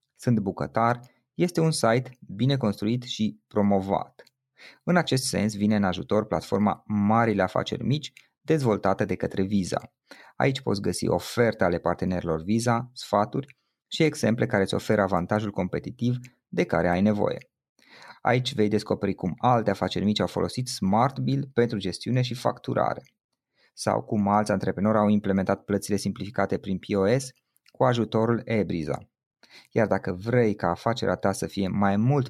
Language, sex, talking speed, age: Romanian, male, 150 wpm, 20-39